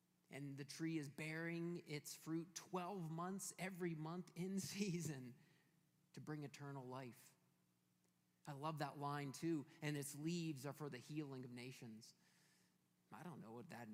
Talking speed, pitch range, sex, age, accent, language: 155 wpm, 145-190 Hz, male, 30-49, American, English